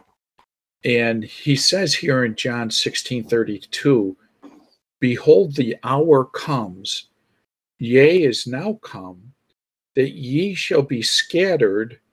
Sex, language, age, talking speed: male, English, 50-69, 100 wpm